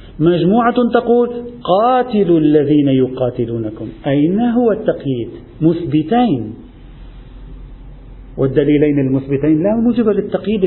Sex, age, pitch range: male, 40-59, 155-215 Hz